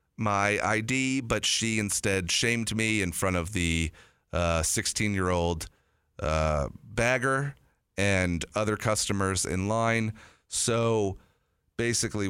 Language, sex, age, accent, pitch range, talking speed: English, male, 40-59, American, 80-110 Hz, 115 wpm